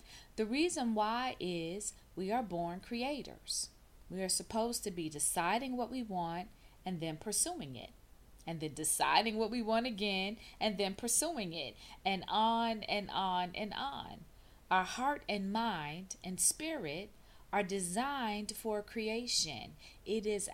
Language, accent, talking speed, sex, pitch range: English, American, 145 wpm, female, 185-230 Hz